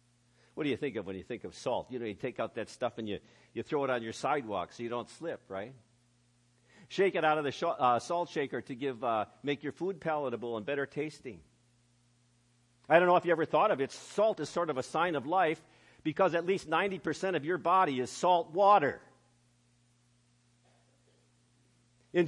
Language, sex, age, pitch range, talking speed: English, male, 50-69, 120-185 Hz, 205 wpm